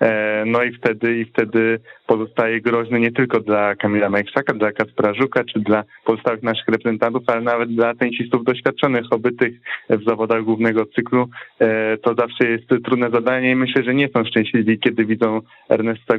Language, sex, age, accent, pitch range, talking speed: Polish, male, 20-39, native, 110-130 Hz, 160 wpm